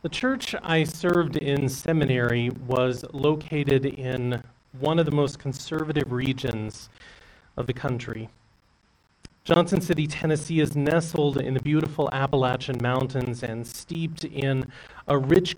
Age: 30-49